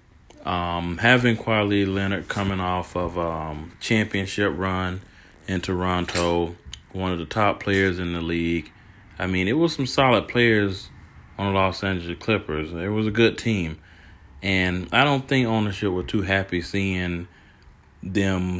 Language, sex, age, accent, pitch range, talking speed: English, male, 30-49, American, 85-100 Hz, 150 wpm